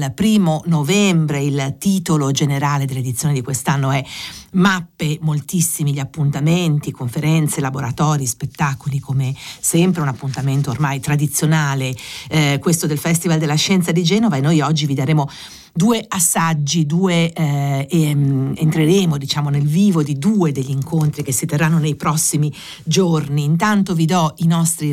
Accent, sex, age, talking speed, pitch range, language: native, female, 50-69, 145 wpm, 145-180 Hz, Italian